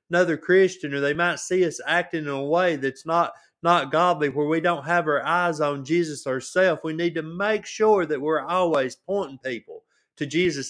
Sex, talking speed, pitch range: male, 200 wpm, 145-180 Hz